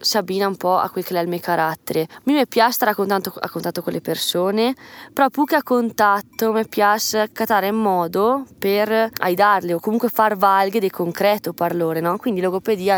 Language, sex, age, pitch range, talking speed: Italian, female, 20-39, 170-205 Hz, 195 wpm